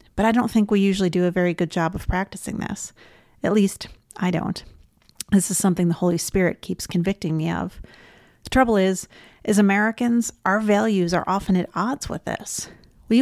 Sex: female